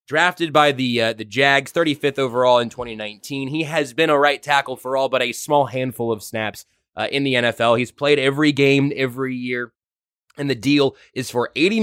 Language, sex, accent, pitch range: English, male, American, 110-145 Hz